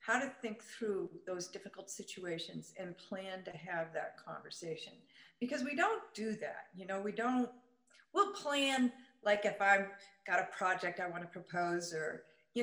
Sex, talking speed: female, 165 wpm